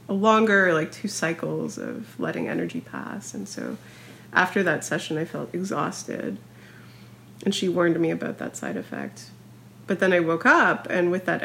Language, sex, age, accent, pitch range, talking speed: English, female, 30-49, American, 160-195 Hz, 175 wpm